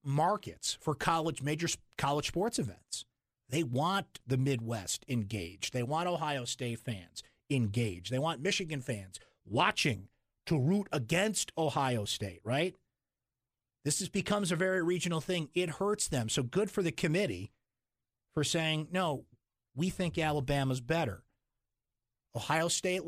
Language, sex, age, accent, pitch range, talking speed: English, male, 50-69, American, 125-185 Hz, 135 wpm